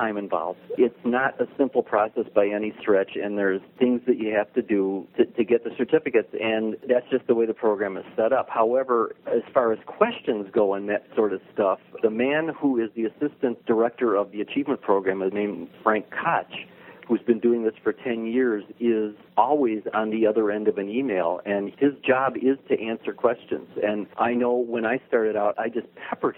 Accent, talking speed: American, 205 wpm